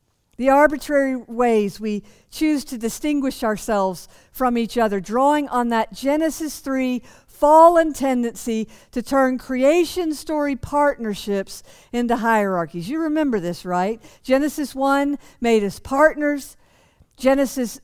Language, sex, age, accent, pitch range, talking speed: English, female, 50-69, American, 240-320 Hz, 120 wpm